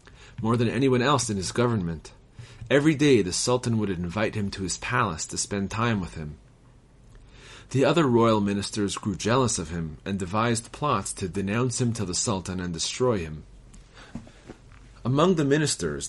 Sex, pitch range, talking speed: male, 95-125 Hz, 170 wpm